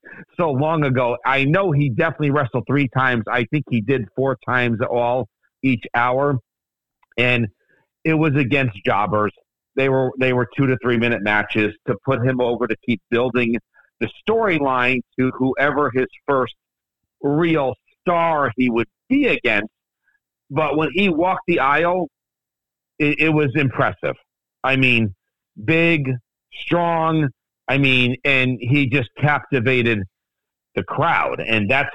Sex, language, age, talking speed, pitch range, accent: male, English, 50-69, 140 wpm, 125-160 Hz, American